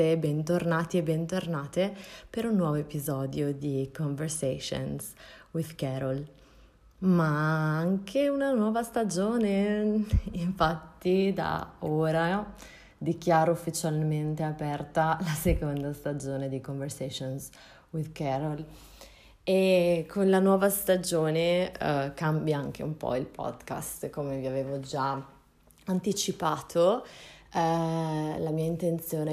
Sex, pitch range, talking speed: female, 145-175 Hz, 100 wpm